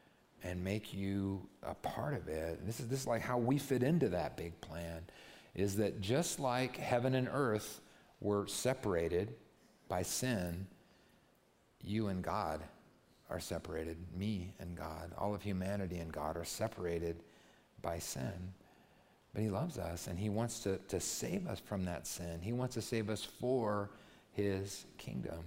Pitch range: 90-115 Hz